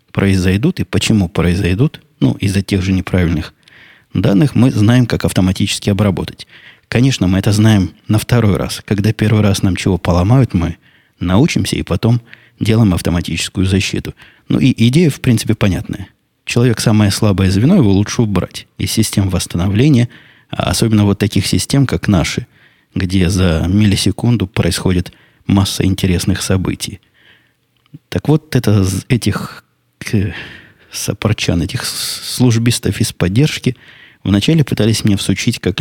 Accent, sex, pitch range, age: native, male, 95-115 Hz, 20-39